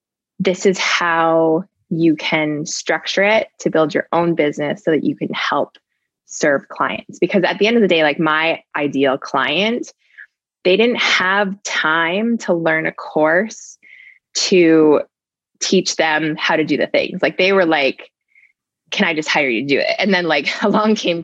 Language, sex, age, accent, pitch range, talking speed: English, female, 20-39, American, 150-185 Hz, 180 wpm